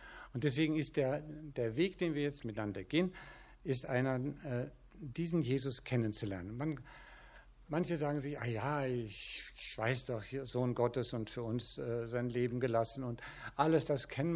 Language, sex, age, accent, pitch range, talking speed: German, male, 60-79, German, 115-145 Hz, 165 wpm